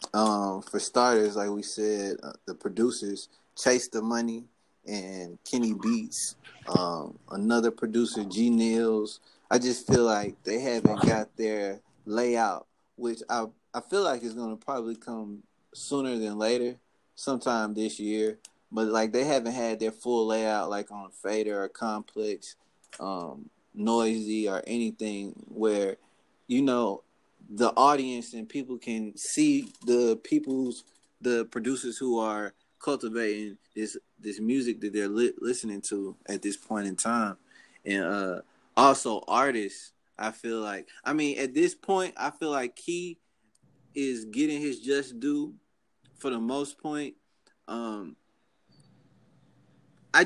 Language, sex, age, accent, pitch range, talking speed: English, male, 20-39, American, 110-130 Hz, 140 wpm